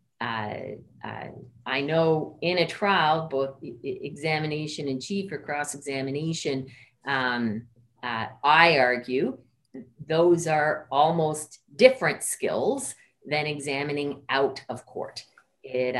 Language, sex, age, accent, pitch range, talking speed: English, female, 40-59, American, 125-155 Hz, 115 wpm